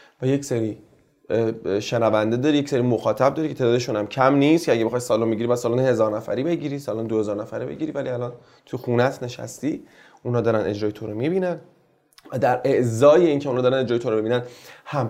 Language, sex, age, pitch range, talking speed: Persian, male, 30-49, 120-155 Hz, 205 wpm